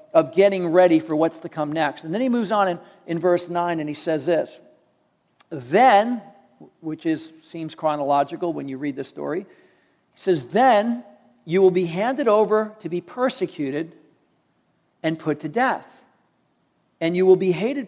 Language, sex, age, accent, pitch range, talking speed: English, male, 50-69, American, 170-230 Hz, 170 wpm